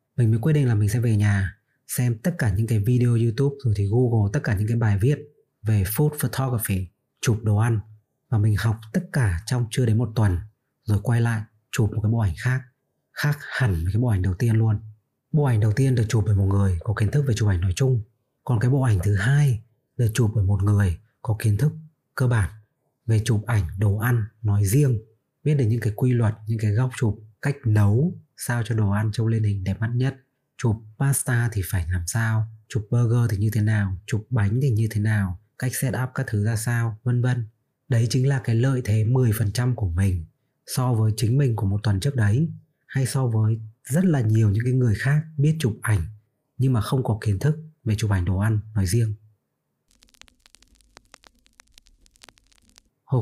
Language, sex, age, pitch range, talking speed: Vietnamese, male, 20-39, 105-130 Hz, 220 wpm